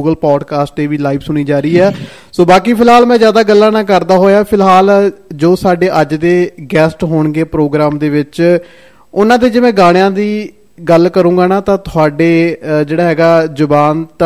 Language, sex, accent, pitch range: Hindi, male, native, 165-200 Hz